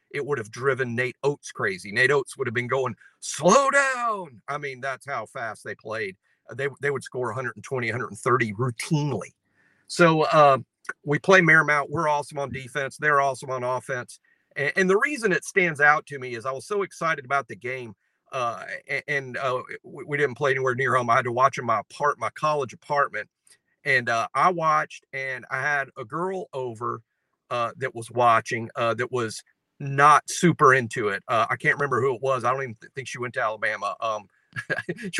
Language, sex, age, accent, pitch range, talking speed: English, male, 50-69, American, 130-180 Hz, 200 wpm